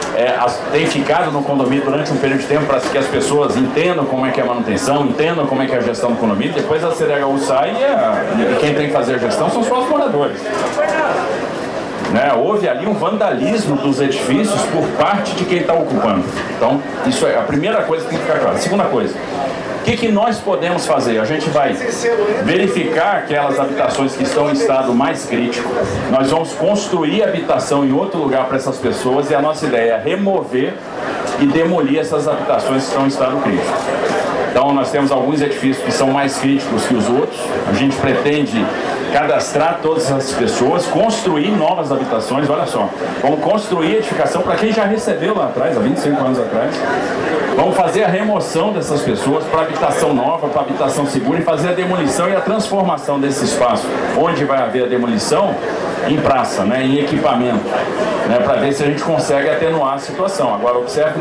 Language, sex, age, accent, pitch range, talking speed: Portuguese, male, 40-59, Brazilian, 135-160 Hz, 195 wpm